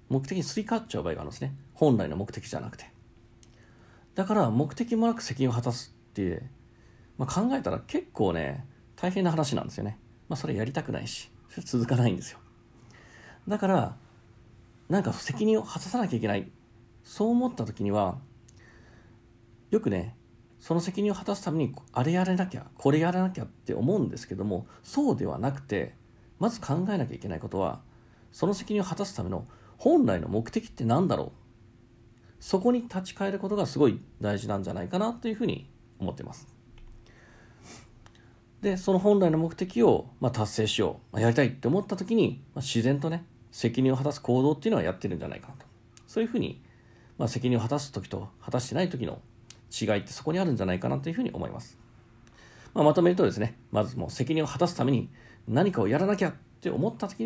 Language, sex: Japanese, male